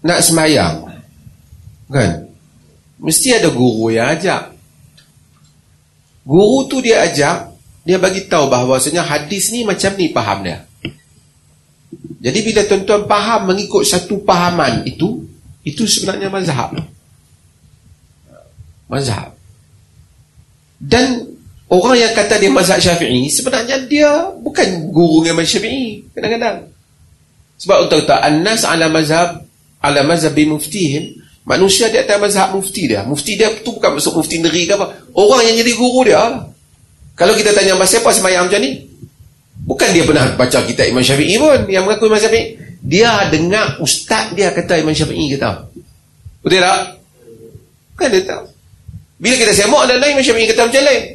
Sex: male